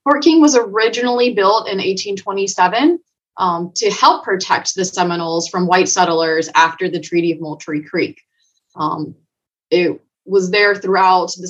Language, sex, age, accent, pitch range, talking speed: English, female, 20-39, American, 165-195 Hz, 145 wpm